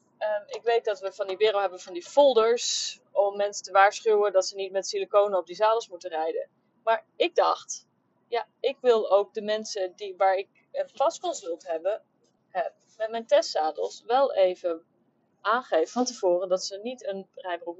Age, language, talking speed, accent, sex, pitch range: 30-49, Dutch, 185 wpm, Dutch, female, 190-265 Hz